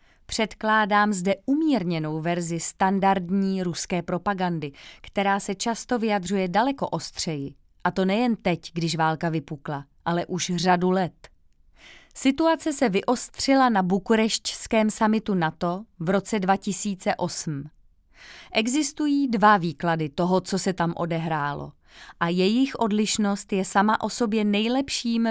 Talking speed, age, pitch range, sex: 120 wpm, 30-49, 170-230 Hz, female